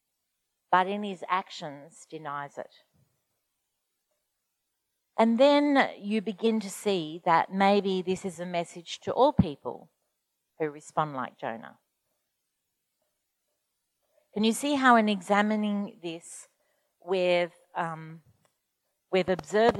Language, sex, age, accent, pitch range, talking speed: English, female, 50-69, Australian, 175-220 Hz, 110 wpm